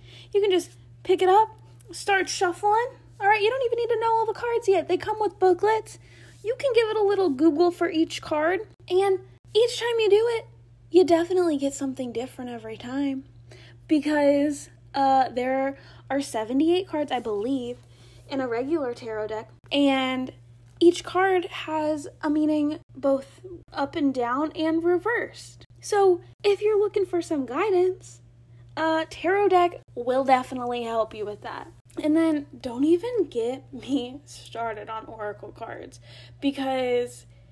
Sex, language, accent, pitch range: female, English, American, 215-350 Hz